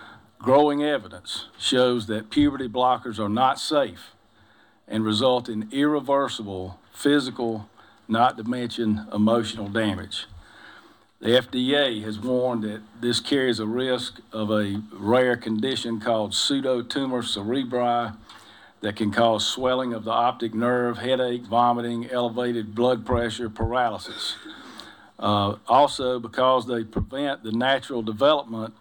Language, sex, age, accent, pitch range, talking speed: English, male, 50-69, American, 110-130 Hz, 120 wpm